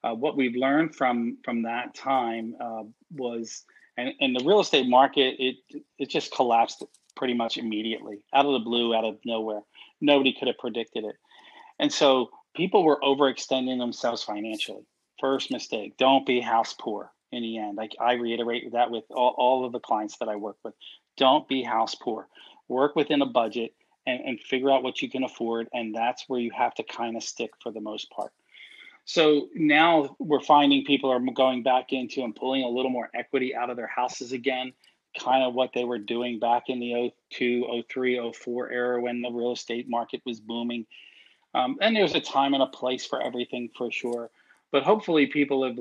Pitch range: 120-140 Hz